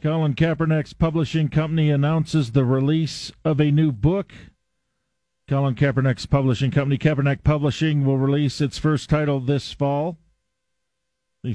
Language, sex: English, male